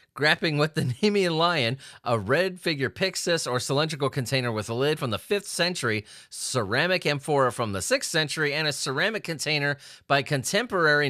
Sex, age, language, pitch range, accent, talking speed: male, 30-49, English, 110-145 Hz, American, 170 wpm